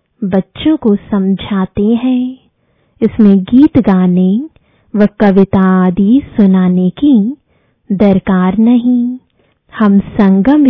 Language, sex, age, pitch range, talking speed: English, female, 20-39, 190-250 Hz, 90 wpm